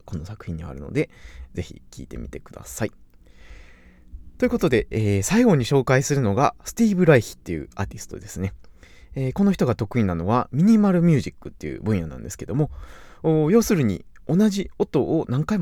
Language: Japanese